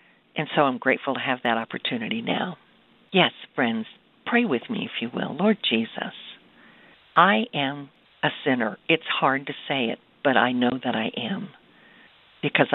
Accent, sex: American, female